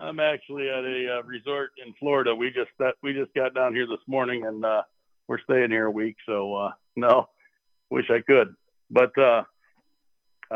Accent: American